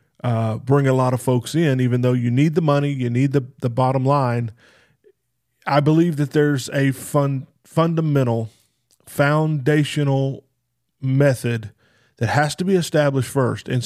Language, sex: English, male